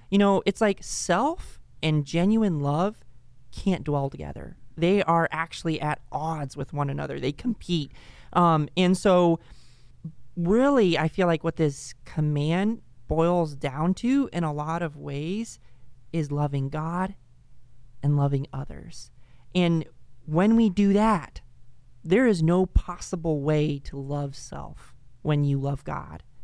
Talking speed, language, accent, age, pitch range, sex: 140 wpm, English, American, 30-49, 135-180 Hz, male